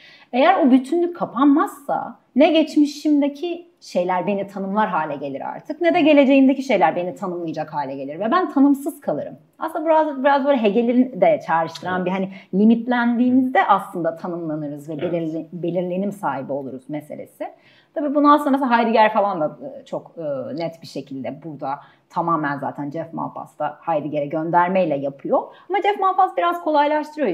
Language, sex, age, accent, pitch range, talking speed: Turkish, female, 30-49, native, 170-275 Hz, 145 wpm